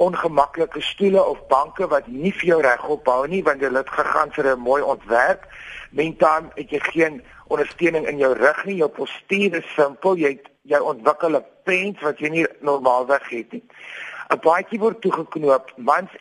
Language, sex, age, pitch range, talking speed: Dutch, male, 50-69, 140-185 Hz, 165 wpm